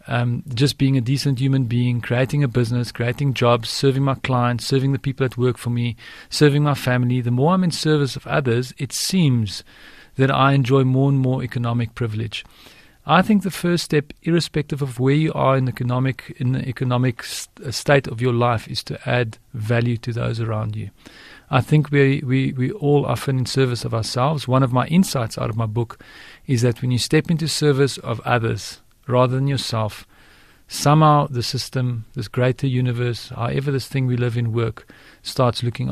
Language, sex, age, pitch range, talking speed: English, male, 40-59, 120-145 Hz, 195 wpm